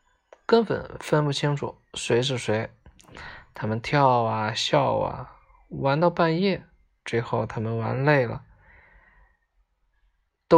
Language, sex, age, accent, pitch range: Chinese, male, 20-39, native, 120-185 Hz